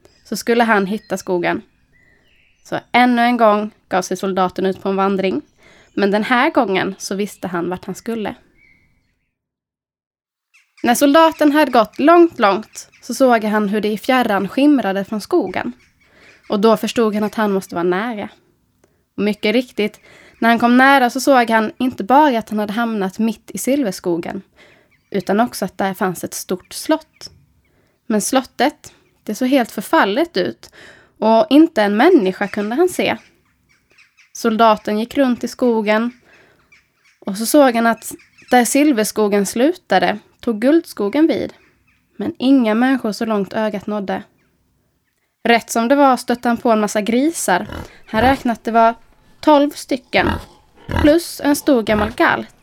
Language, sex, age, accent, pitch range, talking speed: Swedish, female, 20-39, native, 210-265 Hz, 155 wpm